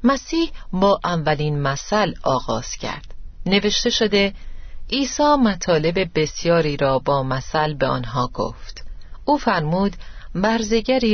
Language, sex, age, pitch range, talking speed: Persian, female, 40-59, 150-225 Hz, 110 wpm